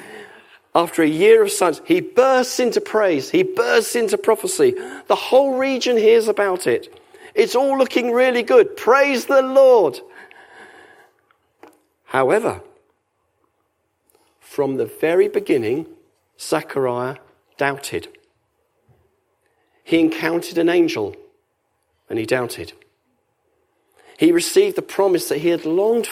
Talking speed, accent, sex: 115 wpm, British, male